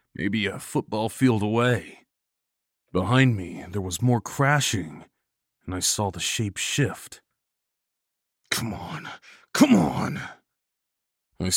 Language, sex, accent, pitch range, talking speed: English, male, American, 90-120 Hz, 115 wpm